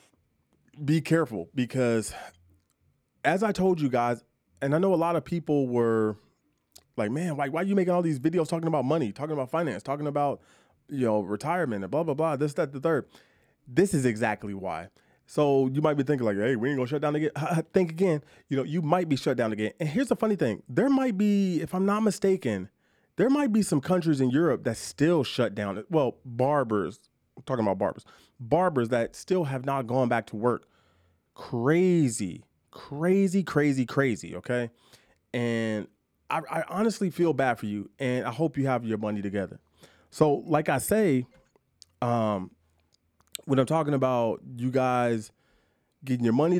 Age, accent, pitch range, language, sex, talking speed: 30-49, American, 115-160 Hz, English, male, 185 wpm